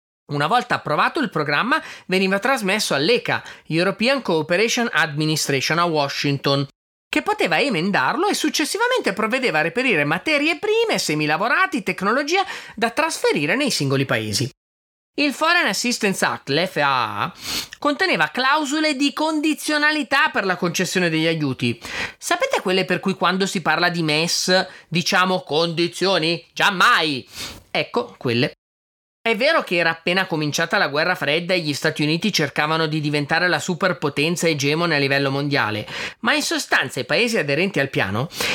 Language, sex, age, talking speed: Italian, male, 30-49, 140 wpm